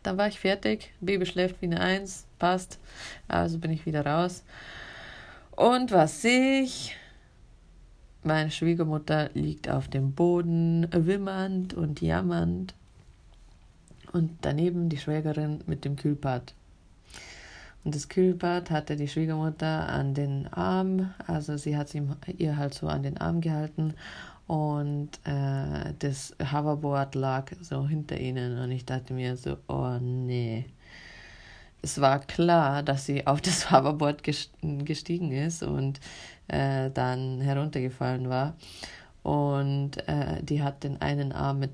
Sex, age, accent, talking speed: female, 30-49, German, 135 wpm